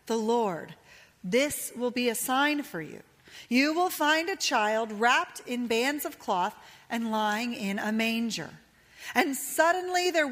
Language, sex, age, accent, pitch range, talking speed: English, female, 40-59, American, 225-310 Hz, 155 wpm